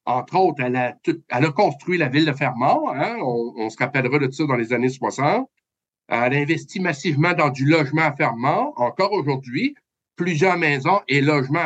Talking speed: 185 wpm